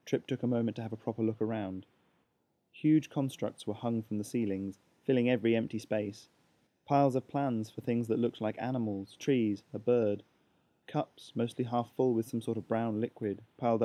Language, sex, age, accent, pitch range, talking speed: English, male, 20-39, British, 100-120 Hz, 190 wpm